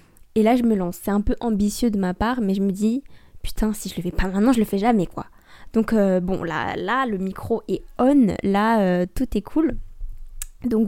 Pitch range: 190-225 Hz